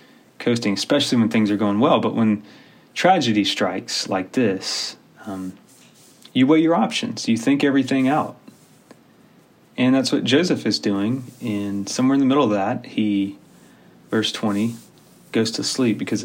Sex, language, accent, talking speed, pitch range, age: male, English, American, 155 wpm, 100-115 Hz, 30-49